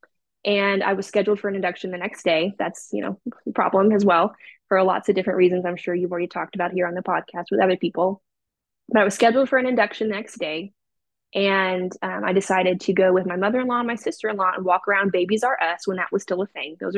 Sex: female